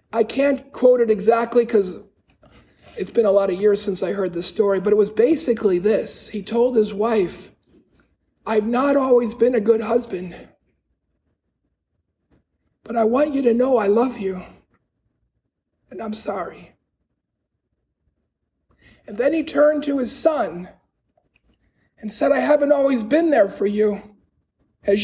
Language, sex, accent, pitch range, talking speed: English, male, American, 200-245 Hz, 150 wpm